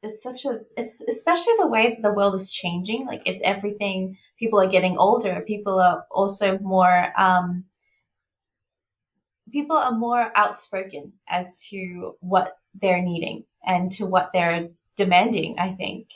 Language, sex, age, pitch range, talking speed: English, female, 20-39, 180-215 Hz, 145 wpm